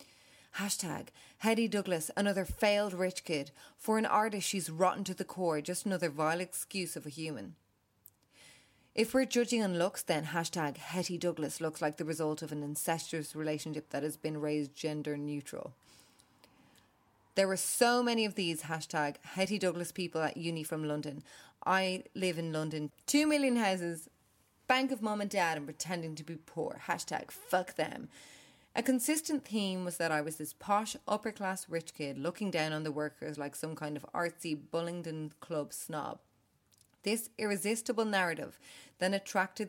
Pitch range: 155-205 Hz